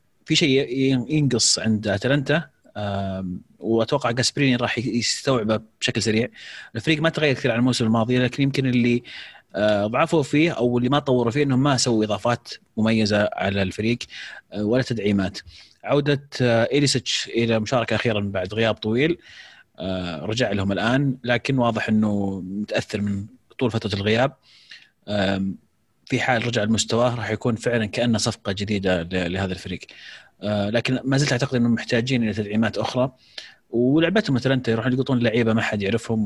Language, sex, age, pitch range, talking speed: Arabic, male, 30-49, 105-130 Hz, 140 wpm